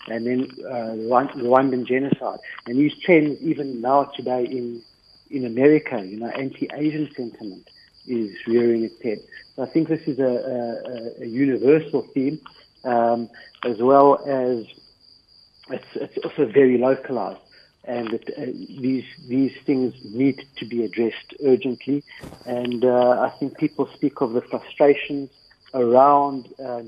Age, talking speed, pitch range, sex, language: 60-79, 145 wpm, 120-135 Hz, male, English